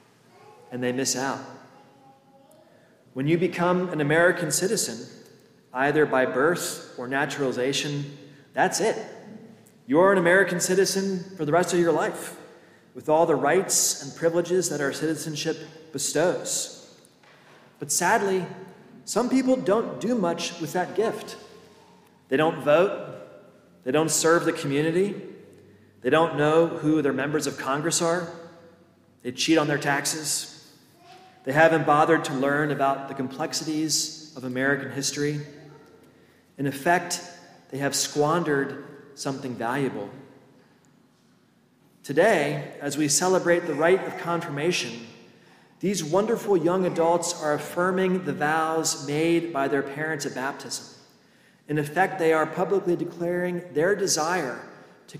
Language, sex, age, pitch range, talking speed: English, male, 30-49, 140-175 Hz, 130 wpm